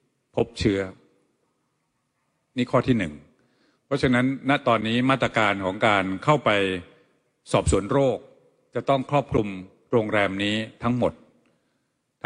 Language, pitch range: Thai, 95-125 Hz